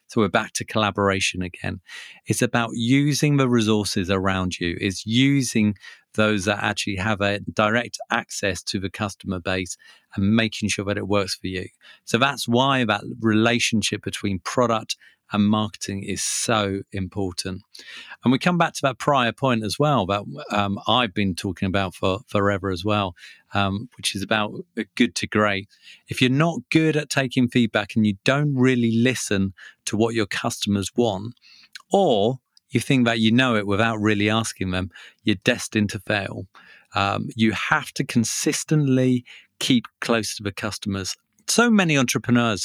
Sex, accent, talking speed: male, British, 165 wpm